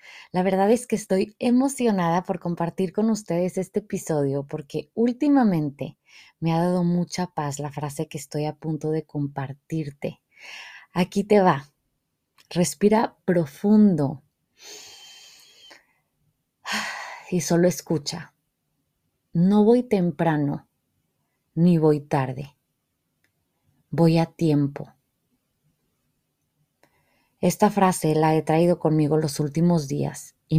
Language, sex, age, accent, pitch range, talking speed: Spanish, female, 20-39, Mexican, 150-180 Hz, 105 wpm